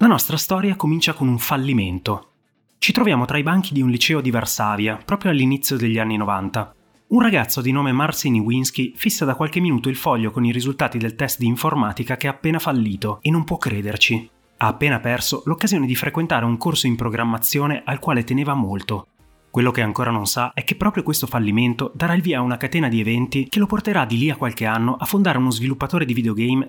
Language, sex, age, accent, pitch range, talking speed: Italian, male, 30-49, native, 115-150 Hz, 215 wpm